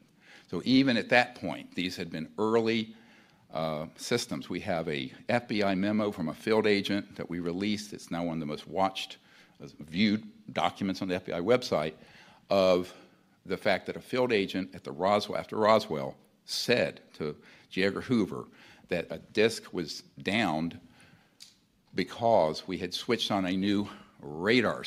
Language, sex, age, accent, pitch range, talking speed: Swedish, male, 50-69, American, 85-105 Hz, 160 wpm